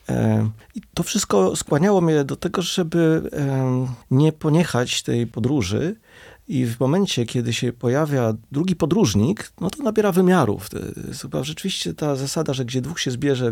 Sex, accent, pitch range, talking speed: male, native, 120-165 Hz, 140 wpm